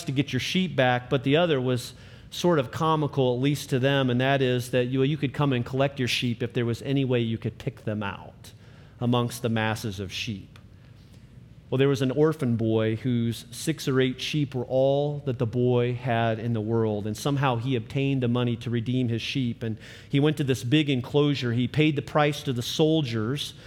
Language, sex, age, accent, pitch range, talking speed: English, male, 40-59, American, 115-140 Hz, 220 wpm